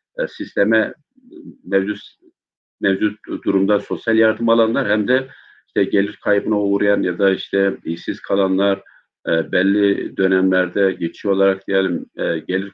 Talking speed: 125 wpm